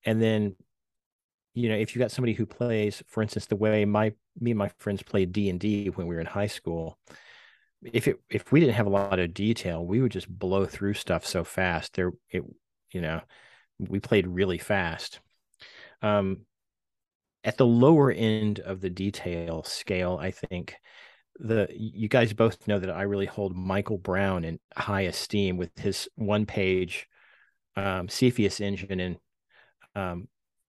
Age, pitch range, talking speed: 30-49, 95-110 Hz, 170 wpm